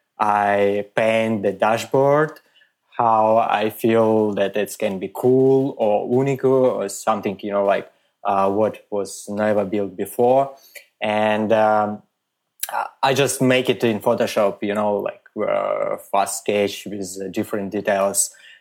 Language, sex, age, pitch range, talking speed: English, male, 20-39, 105-125 Hz, 135 wpm